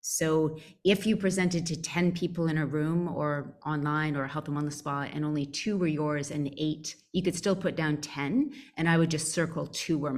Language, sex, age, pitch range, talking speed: English, female, 30-49, 150-175 Hz, 225 wpm